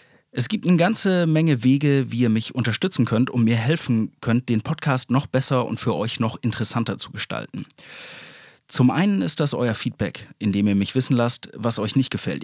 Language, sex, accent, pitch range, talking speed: German, male, German, 110-145 Hz, 200 wpm